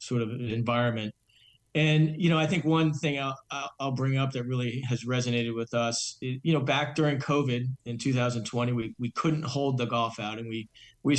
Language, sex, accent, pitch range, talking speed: English, male, American, 120-135 Hz, 205 wpm